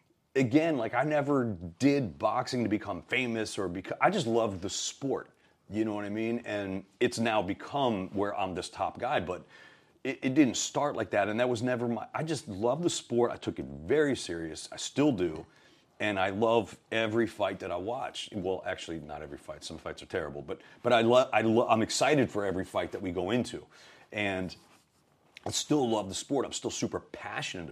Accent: American